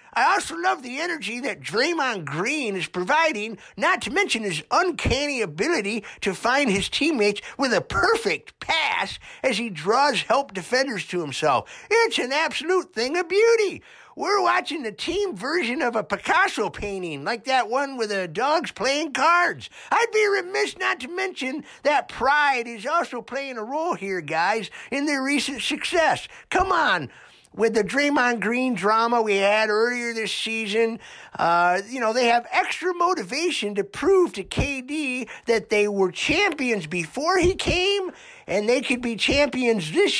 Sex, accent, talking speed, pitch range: male, American, 165 wpm, 205-315 Hz